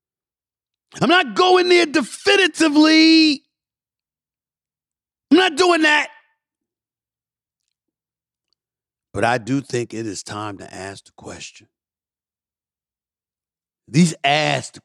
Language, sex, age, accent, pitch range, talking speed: English, male, 50-69, American, 100-145 Hz, 90 wpm